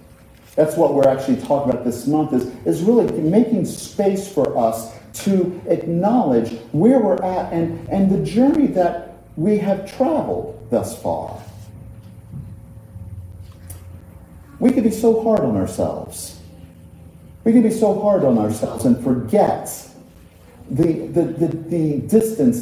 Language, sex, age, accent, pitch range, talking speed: English, male, 50-69, American, 160-240 Hz, 135 wpm